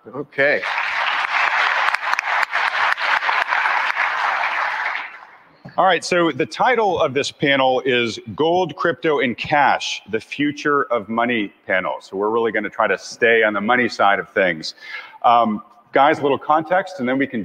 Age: 40-59